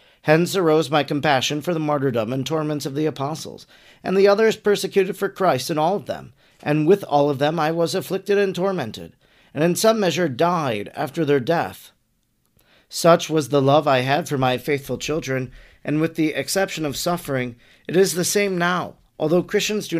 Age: 40-59